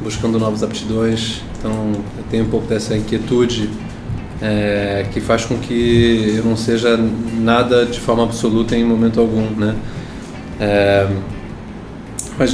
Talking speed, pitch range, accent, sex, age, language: 135 wpm, 105-115 Hz, Brazilian, male, 20-39, Portuguese